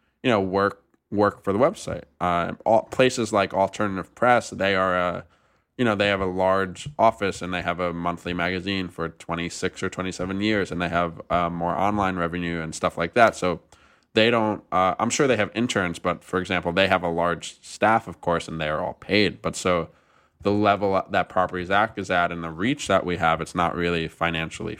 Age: 20-39